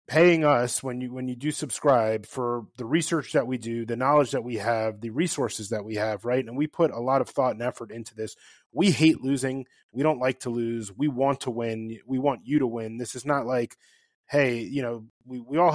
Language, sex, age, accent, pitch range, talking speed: English, male, 20-39, American, 115-140 Hz, 240 wpm